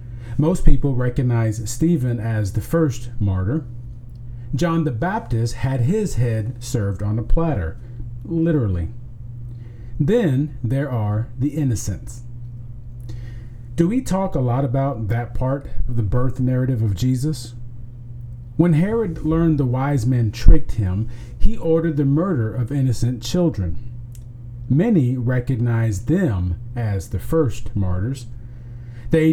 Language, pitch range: English, 120-150 Hz